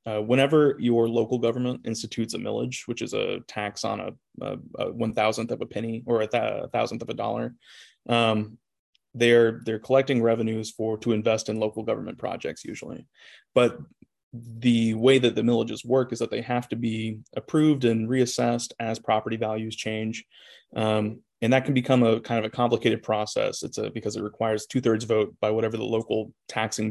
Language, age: English, 20-39